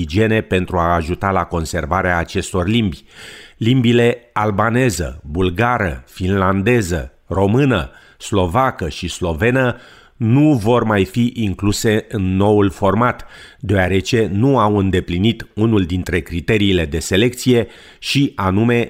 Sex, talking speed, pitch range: male, 110 wpm, 90-110 Hz